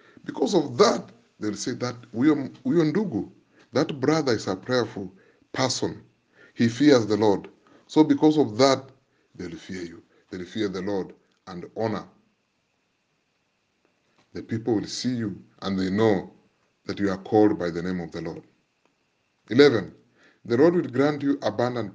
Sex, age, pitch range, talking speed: male, 30-49, 105-145 Hz, 150 wpm